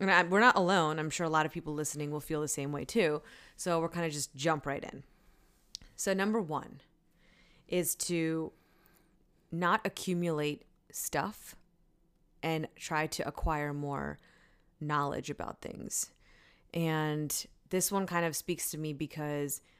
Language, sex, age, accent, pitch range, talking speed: English, female, 20-39, American, 145-175 Hz, 150 wpm